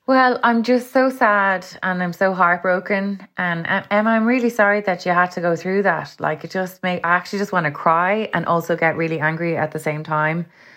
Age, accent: 20-39, Irish